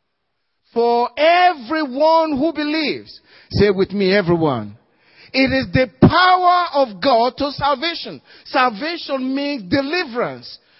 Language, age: English, 40-59